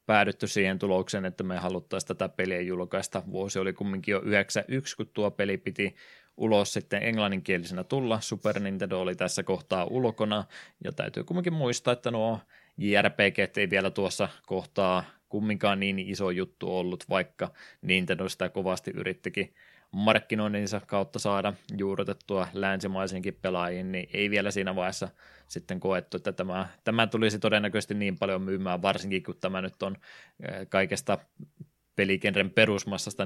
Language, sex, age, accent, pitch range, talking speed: Finnish, male, 20-39, native, 95-105 Hz, 140 wpm